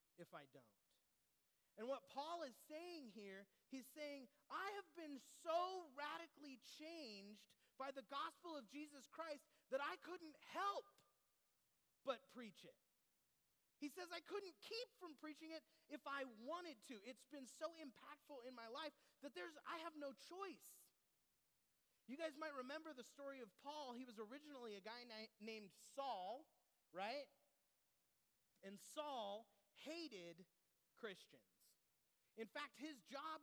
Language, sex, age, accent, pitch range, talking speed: English, male, 30-49, American, 220-300 Hz, 145 wpm